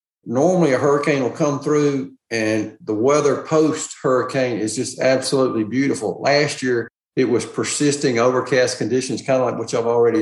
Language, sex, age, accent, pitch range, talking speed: English, male, 50-69, American, 125-155 Hz, 160 wpm